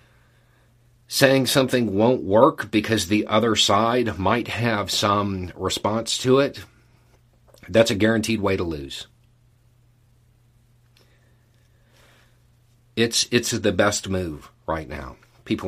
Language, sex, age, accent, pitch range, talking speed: English, male, 40-59, American, 95-120 Hz, 105 wpm